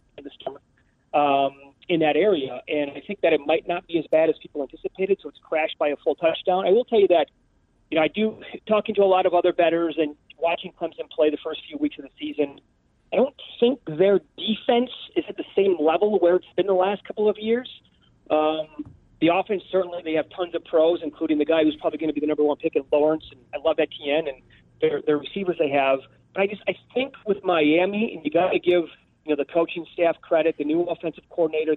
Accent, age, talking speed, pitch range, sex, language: American, 40-59, 240 wpm, 155-195 Hz, male, English